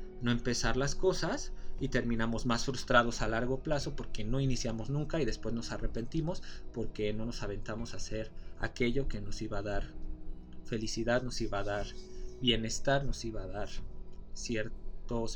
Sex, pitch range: male, 105-135 Hz